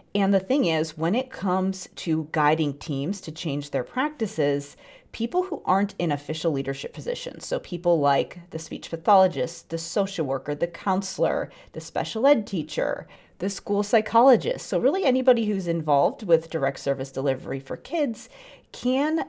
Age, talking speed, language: 40-59, 160 wpm, English